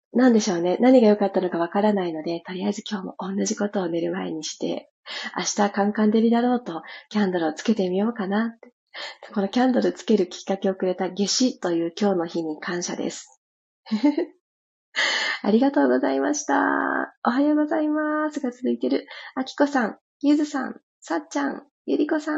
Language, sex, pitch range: Japanese, female, 185-255 Hz